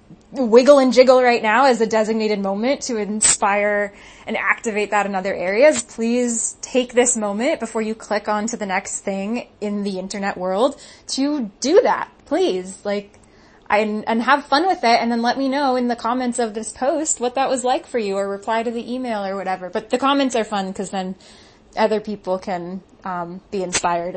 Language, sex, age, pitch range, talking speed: English, female, 20-39, 195-240 Hz, 200 wpm